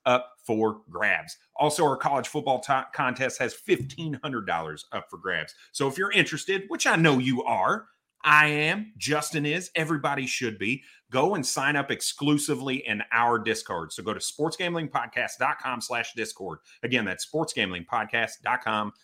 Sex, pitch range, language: male, 110-145 Hz, English